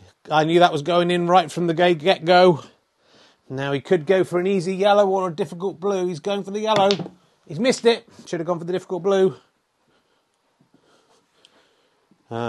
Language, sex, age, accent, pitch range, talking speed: English, male, 30-49, British, 160-210 Hz, 185 wpm